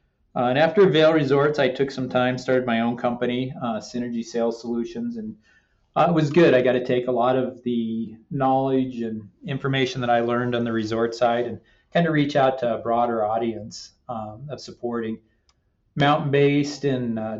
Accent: American